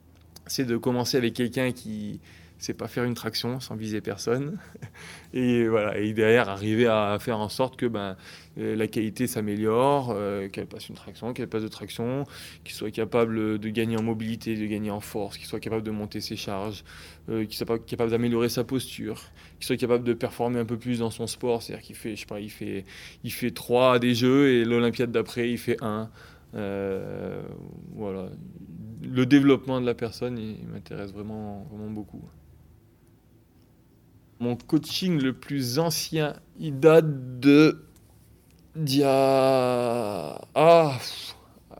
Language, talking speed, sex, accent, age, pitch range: French, 165 wpm, male, French, 20-39, 105-130 Hz